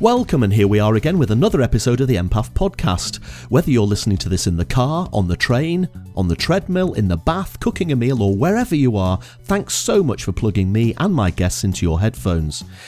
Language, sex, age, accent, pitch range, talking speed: English, male, 40-59, British, 95-140 Hz, 230 wpm